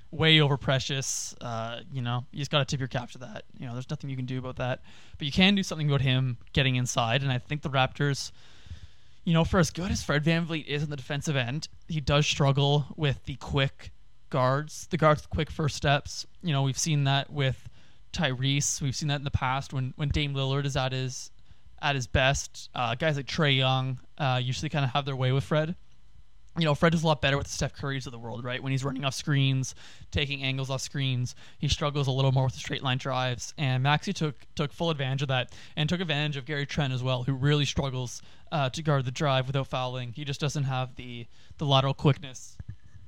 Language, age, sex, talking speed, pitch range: English, 20-39, male, 235 wpm, 130-145 Hz